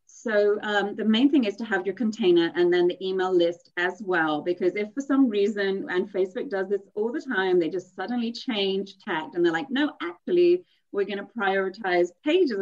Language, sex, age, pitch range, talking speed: English, female, 30-49, 185-305 Hz, 210 wpm